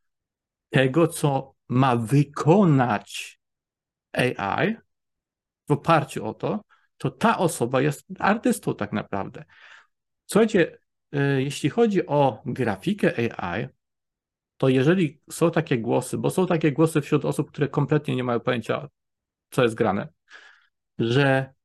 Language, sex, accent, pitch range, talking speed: Polish, male, native, 125-170 Hz, 115 wpm